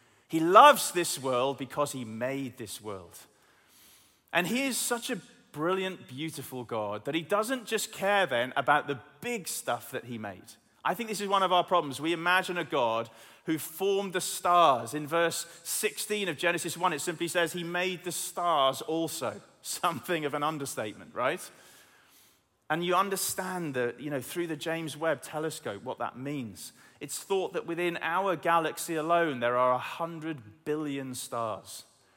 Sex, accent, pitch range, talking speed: male, British, 140-195 Hz, 170 wpm